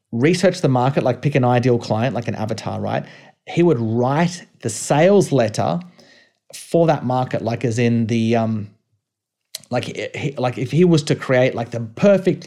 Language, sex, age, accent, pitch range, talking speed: English, male, 30-49, Australian, 125-160 Hz, 180 wpm